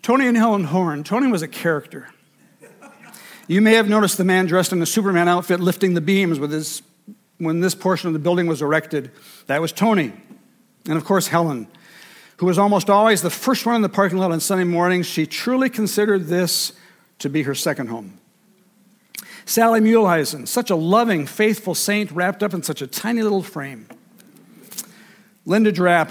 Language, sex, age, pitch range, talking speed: English, male, 60-79, 165-210 Hz, 180 wpm